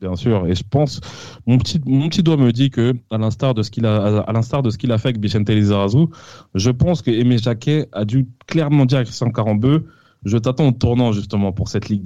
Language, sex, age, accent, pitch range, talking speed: French, male, 20-39, French, 105-130 Hz, 245 wpm